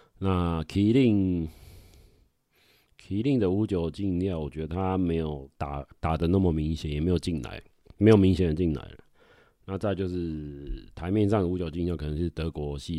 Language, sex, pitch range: Chinese, male, 75-90 Hz